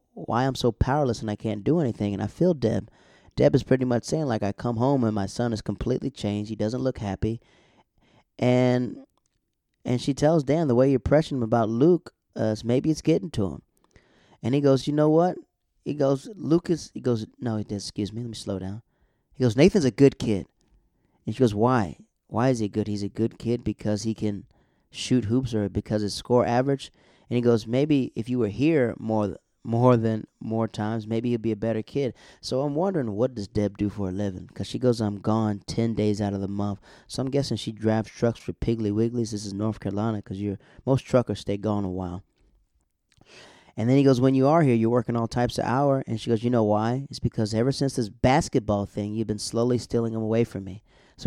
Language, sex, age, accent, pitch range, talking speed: English, male, 30-49, American, 105-135 Hz, 225 wpm